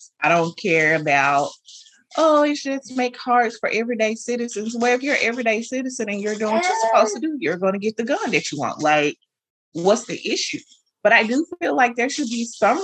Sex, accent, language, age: female, American, English, 30-49